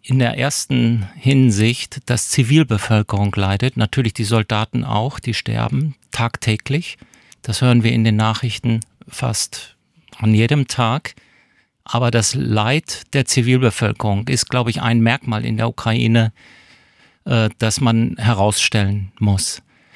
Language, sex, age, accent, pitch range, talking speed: German, male, 50-69, German, 110-130 Hz, 125 wpm